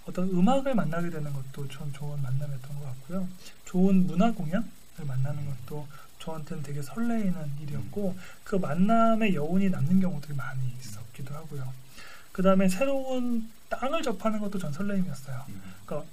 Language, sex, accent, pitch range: Korean, male, native, 150-205 Hz